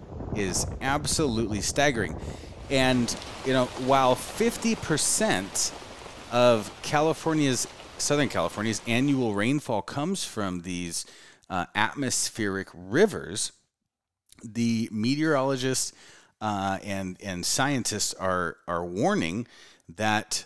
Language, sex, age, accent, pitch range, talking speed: English, male, 30-49, American, 90-130 Hz, 90 wpm